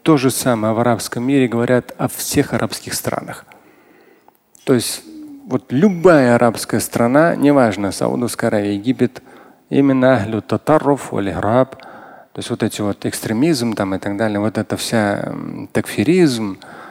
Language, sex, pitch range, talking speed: Russian, male, 105-140 Hz, 140 wpm